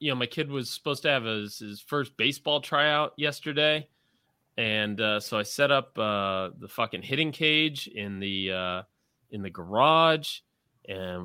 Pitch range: 110-150 Hz